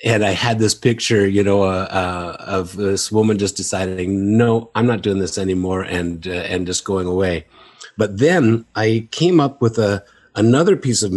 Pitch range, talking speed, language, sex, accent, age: 95-115 Hz, 195 wpm, English, male, American, 50-69